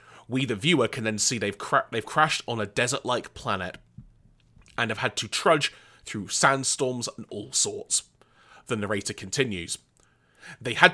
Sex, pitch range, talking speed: male, 110-155 Hz, 160 wpm